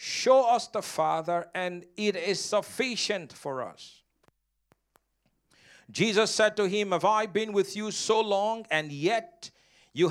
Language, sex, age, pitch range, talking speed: English, male, 50-69, 185-235 Hz, 145 wpm